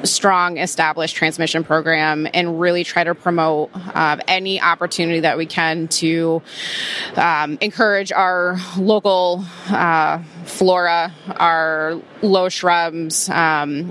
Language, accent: English, American